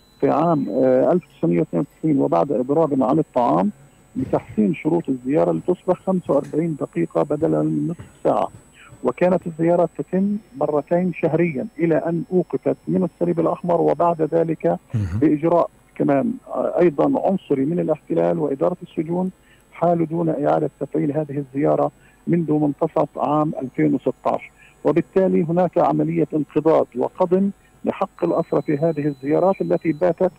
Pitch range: 135-175 Hz